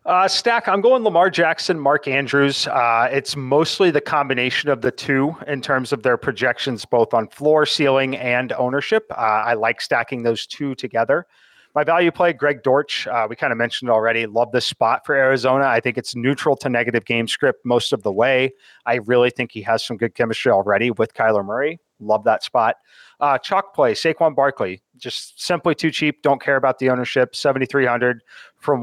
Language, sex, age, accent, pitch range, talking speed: English, male, 30-49, American, 125-150 Hz, 195 wpm